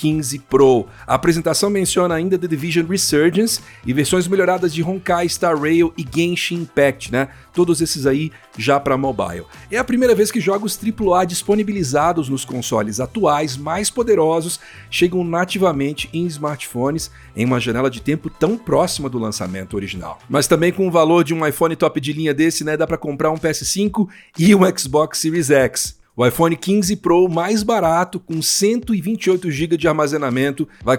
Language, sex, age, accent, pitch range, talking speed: Portuguese, male, 50-69, Brazilian, 135-175 Hz, 170 wpm